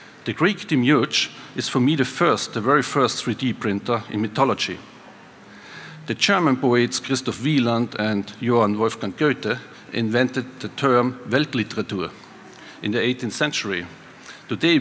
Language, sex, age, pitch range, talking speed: German, male, 50-69, 115-140 Hz, 135 wpm